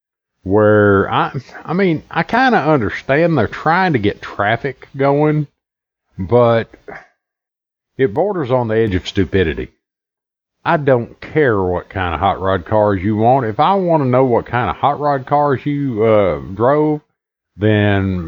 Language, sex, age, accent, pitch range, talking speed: English, male, 50-69, American, 105-150 Hz, 160 wpm